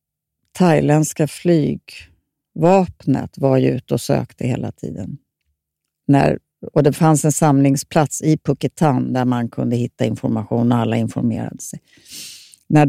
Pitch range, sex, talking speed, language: 125-155 Hz, female, 125 wpm, Swedish